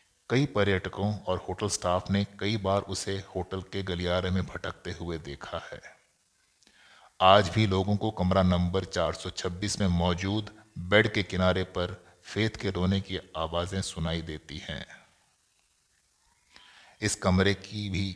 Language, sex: Hindi, male